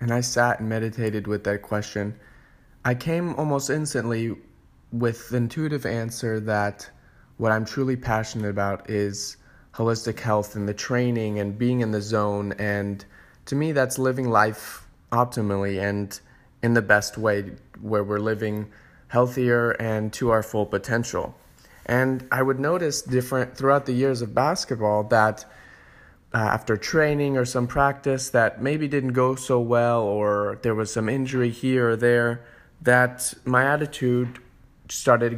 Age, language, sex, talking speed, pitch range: 20-39, English, male, 155 wpm, 105-125 Hz